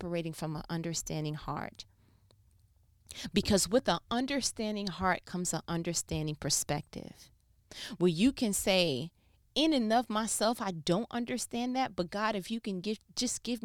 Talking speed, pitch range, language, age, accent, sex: 145 wpm, 165-215 Hz, English, 30-49, American, female